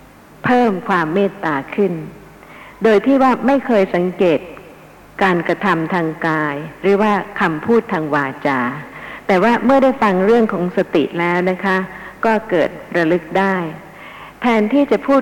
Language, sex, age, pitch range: Thai, female, 60-79, 165-215 Hz